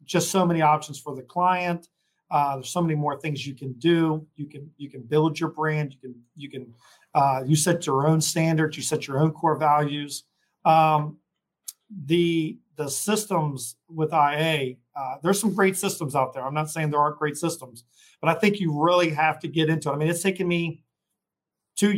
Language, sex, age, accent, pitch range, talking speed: English, male, 40-59, American, 150-175 Hz, 205 wpm